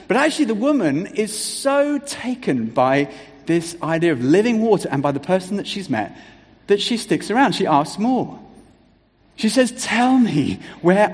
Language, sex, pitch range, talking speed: English, male, 160-220 Hz, 170 wpm